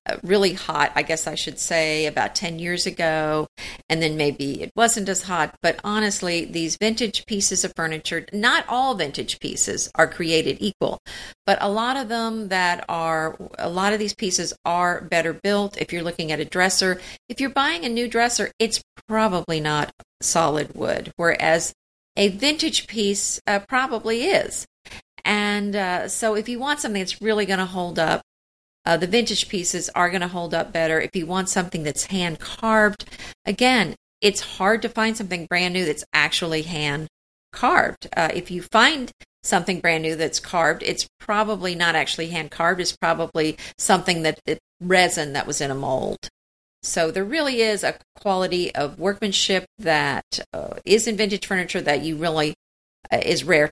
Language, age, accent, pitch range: English, 50-69, American, 160-210 Hz